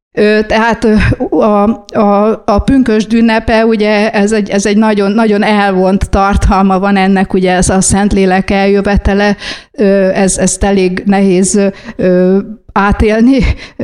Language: Hungarian